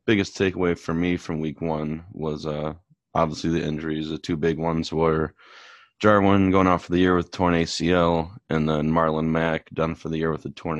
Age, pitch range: 20-39, 80-90 Hz